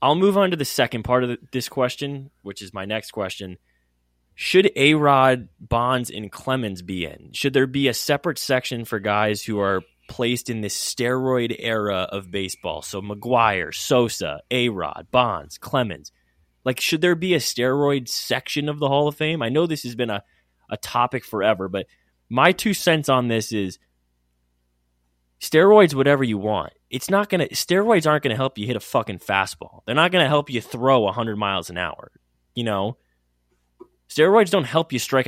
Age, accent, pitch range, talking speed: 20-39, American, 90-140 Hz, 185 wpm